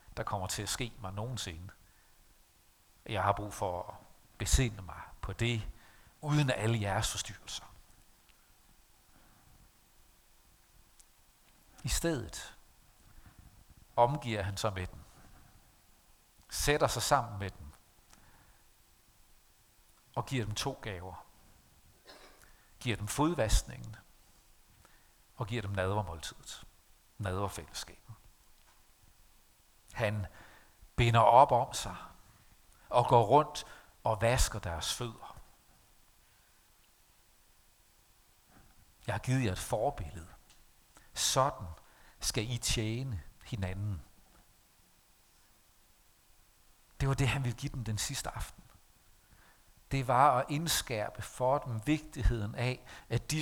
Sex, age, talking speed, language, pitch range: male, 60-79, 100 wpm, Danish, 90-120 Hz